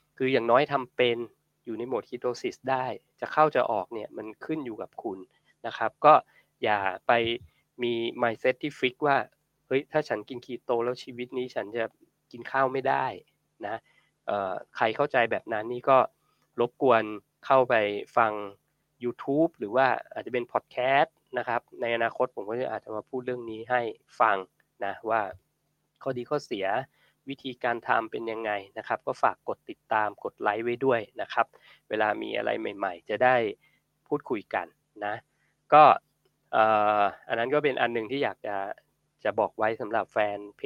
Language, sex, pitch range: Thai, male, 115-135 Hz